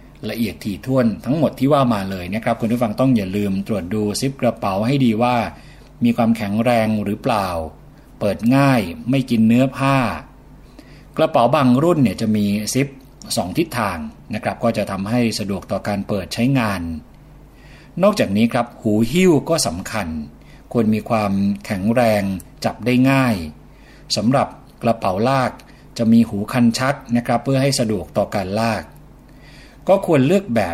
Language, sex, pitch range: Thai, male, 100-130 Hz